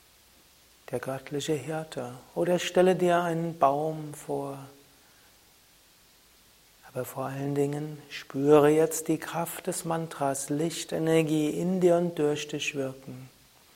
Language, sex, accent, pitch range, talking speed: German, male, German, 140-160 Hz, 115 wpm